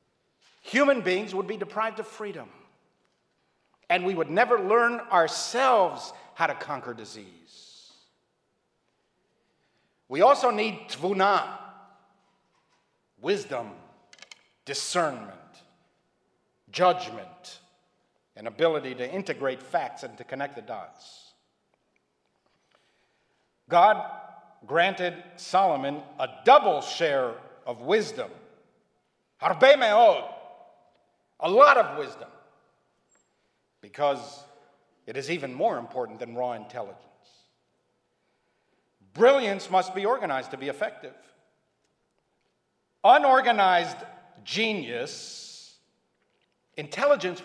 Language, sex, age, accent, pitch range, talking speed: English, male, 50-69, American, 175-240 Hz, 80 wpm